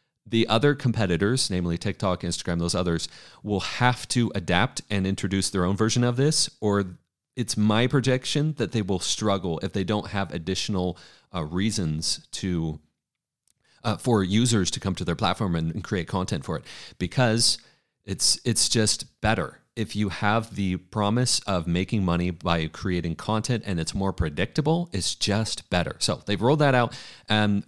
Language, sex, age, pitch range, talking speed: English, male, 30-49, 90-125 Hz, 170 wpm